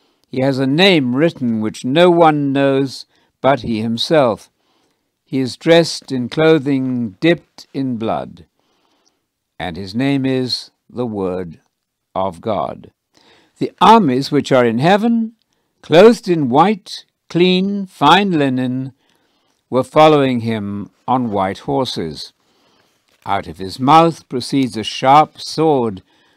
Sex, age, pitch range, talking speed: male, 60-79, 115-160 Hz, 125 wpm